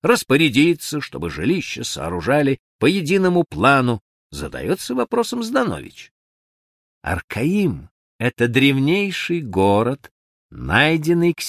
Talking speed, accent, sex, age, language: 85 wpm, native, male, 50-69, Russian